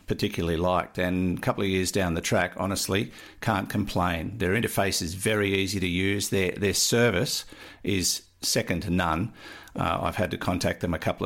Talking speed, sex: 185 wpm, male